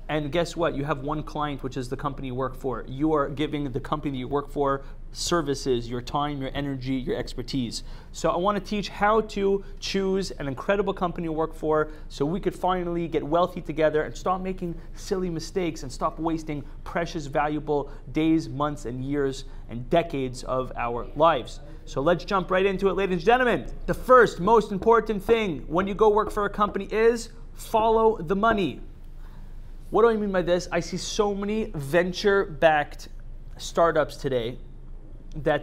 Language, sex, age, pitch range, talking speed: English, male, 30-49, 140-180 Hz, 180 wpm